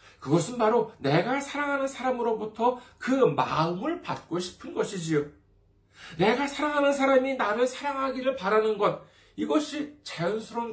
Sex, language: male, Korean